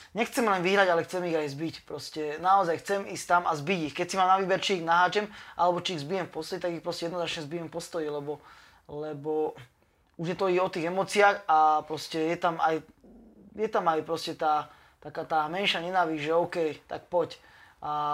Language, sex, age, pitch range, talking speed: Slovak, male, 20-39, 155-180 Hz, 205 wpm